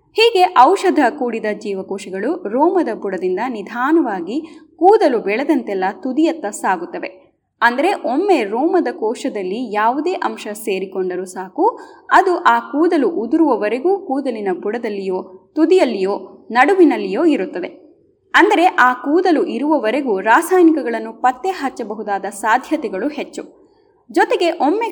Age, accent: 20-39, native